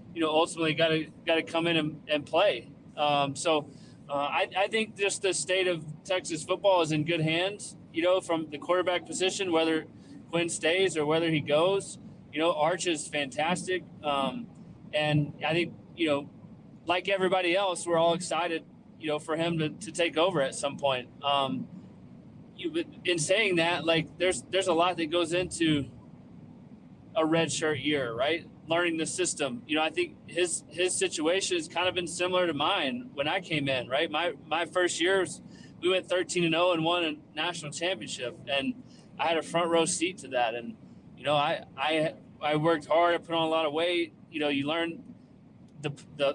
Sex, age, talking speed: male, 20-39, 195 wpm